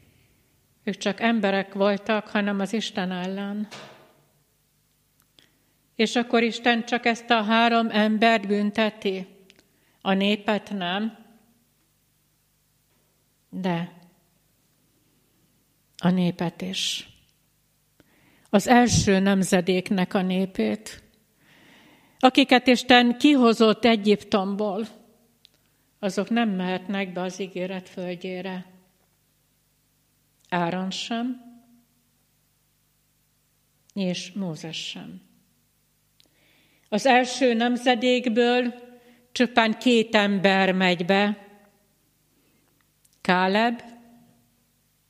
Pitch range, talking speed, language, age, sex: 180-230 Hz, 70 wpm, Hungarian, 60-79, female